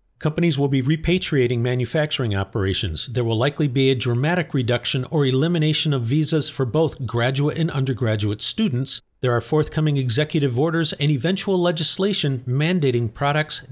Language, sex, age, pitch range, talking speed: English, male, 40-59, 125-165 Hz, 145 wpm